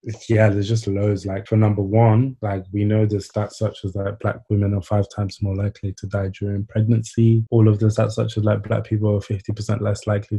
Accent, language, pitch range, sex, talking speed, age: British, English, 100-115 Hz, male, 235 wpm, 20-39